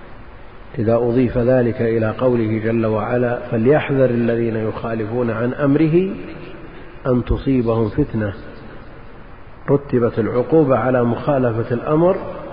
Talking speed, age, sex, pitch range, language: 95 wpm, 50-69, male, 115-135 Hz, Arabic